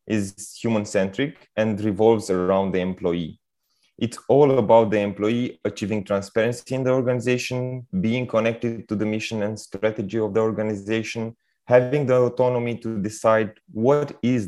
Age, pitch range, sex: 30-49, 105-125 Hz, male